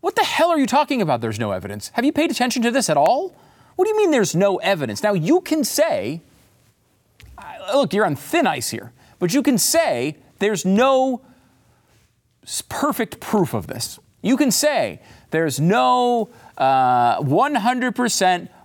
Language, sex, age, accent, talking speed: English, male, 40-59, American, 170 wpm